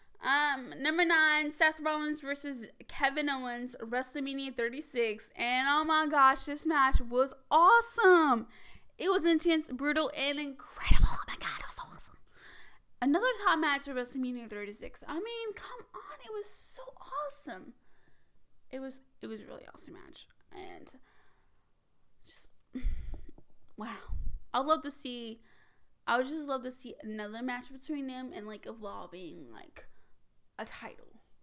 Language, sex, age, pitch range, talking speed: English, female, 10-29, 250-315 Hz, 145 wpm